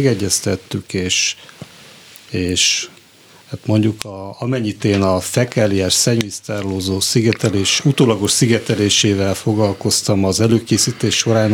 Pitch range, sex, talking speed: 100-120 Hz, male, 95 wpm